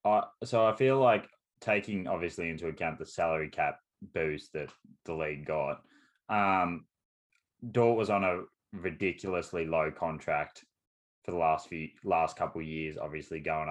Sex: male